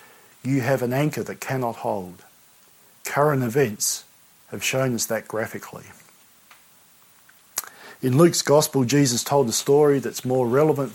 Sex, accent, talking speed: male, Australian, 130 wpm